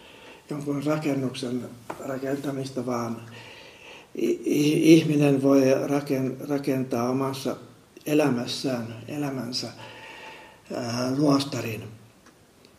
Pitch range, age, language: 125-145 Hz, 60-79, Finnish